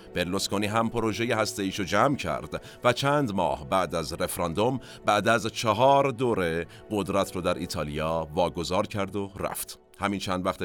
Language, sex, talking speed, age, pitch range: Persian, male, 165 wpm, 50-69, 90-125 Hz